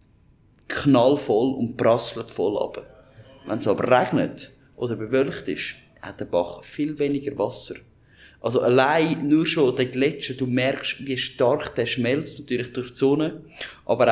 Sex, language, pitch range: male, German, 110-145 Hz